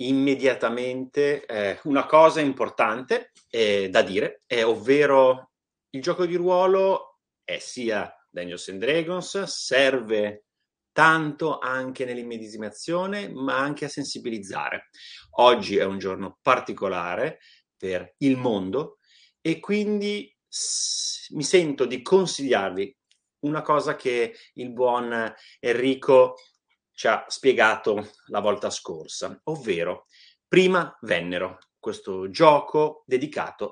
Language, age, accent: Italian, 30-49, native